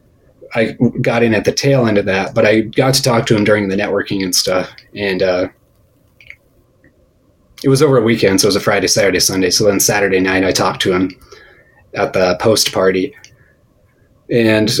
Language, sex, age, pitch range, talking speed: English, male, 30-49, 95-115 Hz, 195 wpm